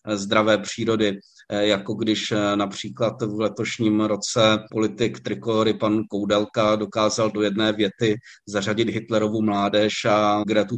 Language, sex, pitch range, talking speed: Czech, male, 110-120 Hz, 115 wpm